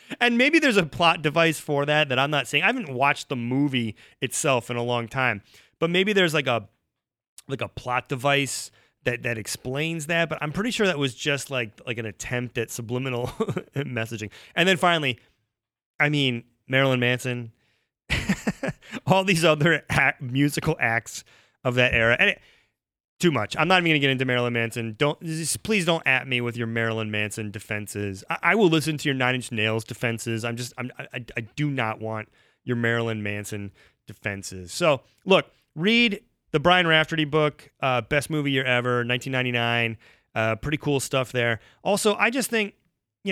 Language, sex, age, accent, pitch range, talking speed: English, male, 30-49, American, 115-155 Hz, 185 wpm